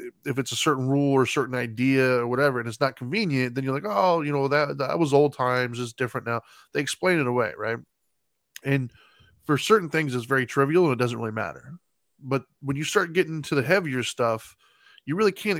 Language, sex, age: English, male, 10-29